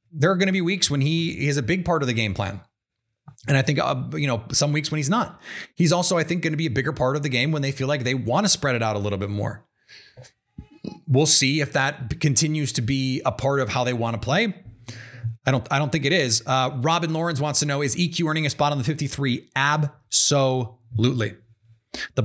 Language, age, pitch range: English, 30-49, 130-165 Hz